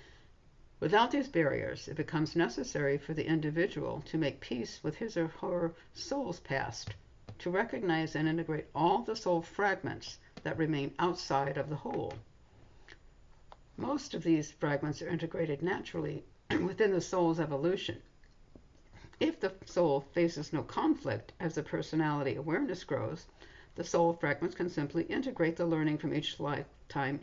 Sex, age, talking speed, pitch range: female, 60-79, 145 wpm, 140-175 Hz